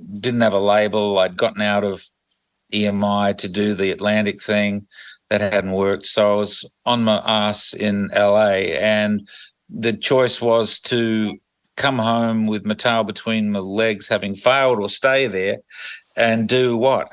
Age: 50-69